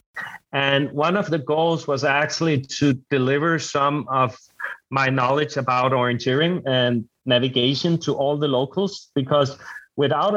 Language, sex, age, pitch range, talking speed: English, male, 30-49, 130-160 Hz, 135 wpm